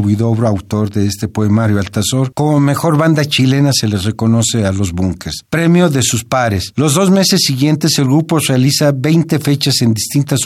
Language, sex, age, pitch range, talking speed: Spanish, male, 50-69, 115-145 Hz, 180 wpm